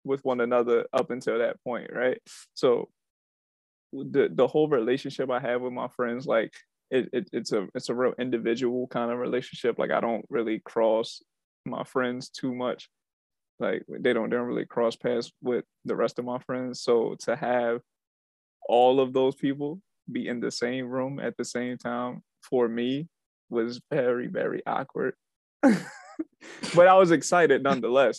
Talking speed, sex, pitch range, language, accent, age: 170 wpm, male, 120-135 Hz, English, American, 20-39